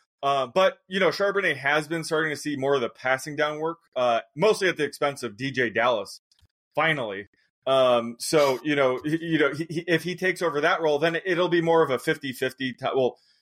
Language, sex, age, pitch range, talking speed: English, male, 20-39, 120-150 Hz, 220 wpm